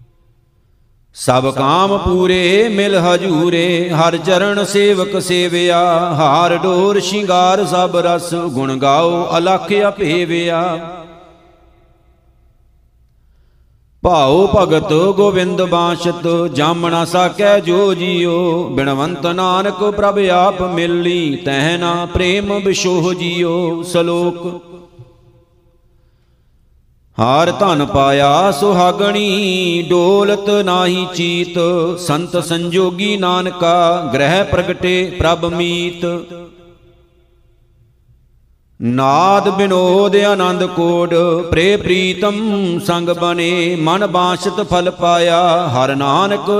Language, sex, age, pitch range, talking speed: Punjabi, male, 50-69, 170-185 Hz, 80 wpm